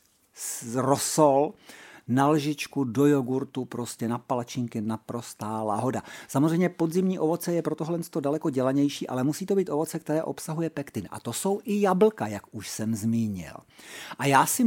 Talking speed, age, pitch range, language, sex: 160 wpm, 50-69, 130-200 Hz, Czech, male